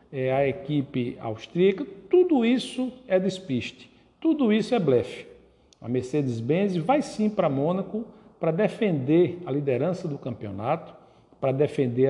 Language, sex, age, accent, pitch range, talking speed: Portuguese, male, 60-79, Brazilian, 135-190 Hz, 130 wpm